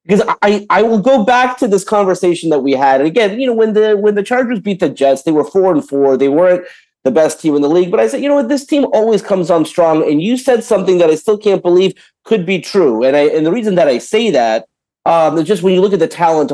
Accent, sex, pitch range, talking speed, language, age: American, male, 160-220 Hz, 285 wpm, English, 40-59